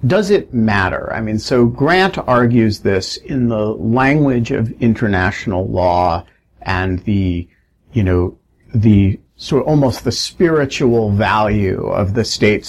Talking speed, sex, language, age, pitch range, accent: 135 wpm, male, English, 50-69, 105-135 Hz, American